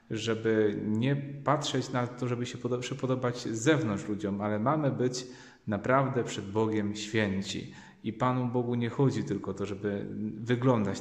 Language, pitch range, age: Polish, 105-125 Hz, 30-49